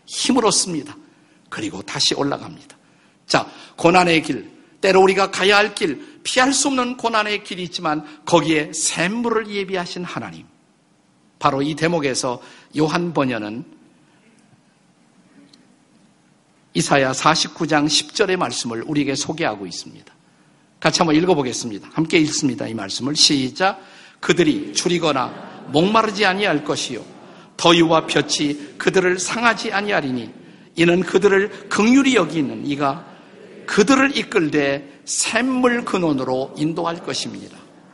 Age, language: 50-69, Korean